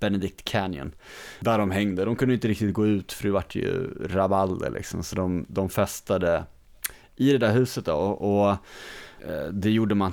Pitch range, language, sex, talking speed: 95-115 Hz, Swedish, male, 180 wpm